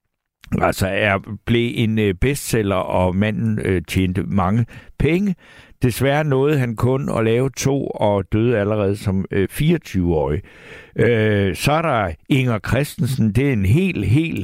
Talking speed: 145 wpm